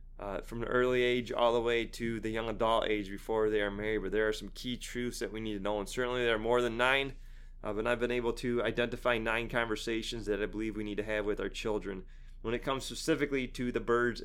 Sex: male